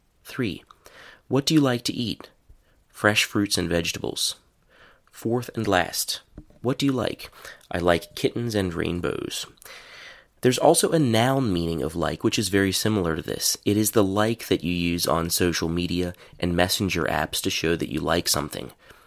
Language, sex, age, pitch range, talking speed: English, male, 30-49, 85-110 Hz, 175 wpm